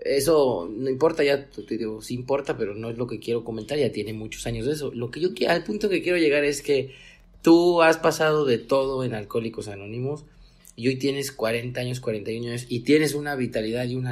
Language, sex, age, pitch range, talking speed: Spanish, male, 30-49, 120-145 Hz, 225 wpm